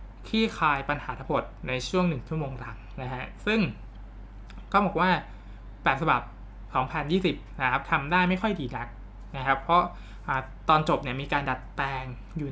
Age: 20-39